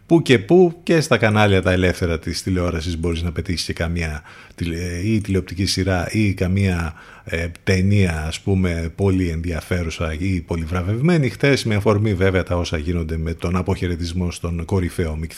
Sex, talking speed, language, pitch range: male, 160 wpm, Greek, 85-110 Hz